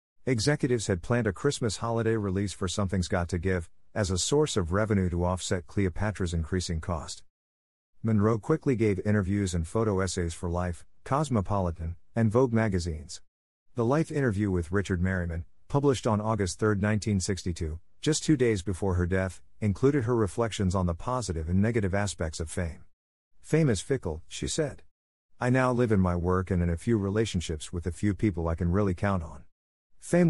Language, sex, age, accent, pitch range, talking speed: English, male, 50-69, American, 90-115 Hz, 175 wpm